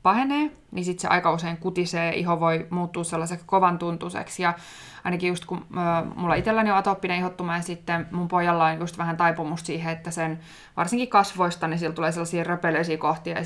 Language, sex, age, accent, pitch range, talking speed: Finnish, female, 20-39, native, 165-180 Hz, 185 wpm